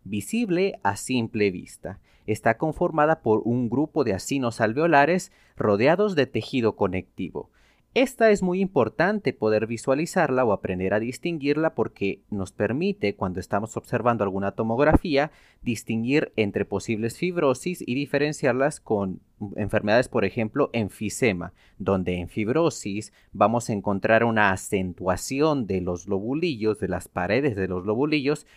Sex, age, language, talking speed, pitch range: male, 40-59, Spanish, 130 wpm, 105-150 Hz